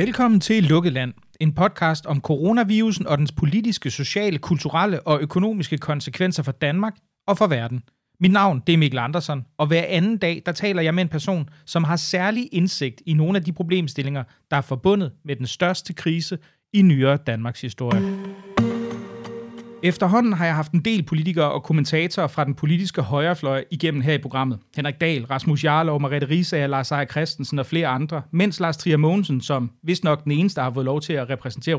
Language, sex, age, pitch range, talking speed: Danish, male, 30-49, 145-185 Hz, 190 wpm